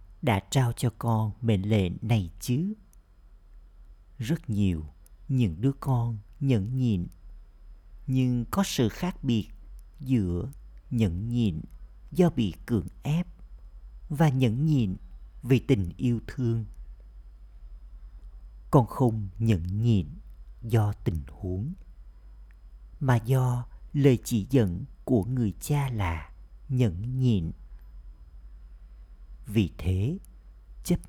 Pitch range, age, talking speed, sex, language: 90-125 Hz, 50-69, 105 wpm, male, Vietnamese